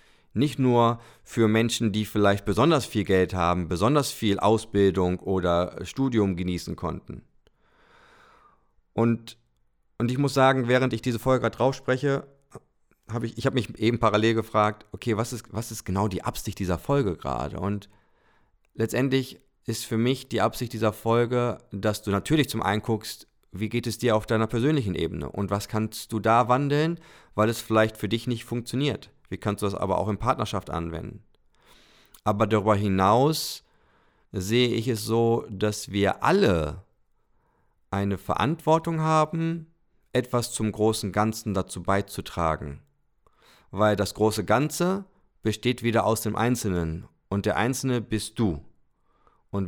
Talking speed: 150 wpm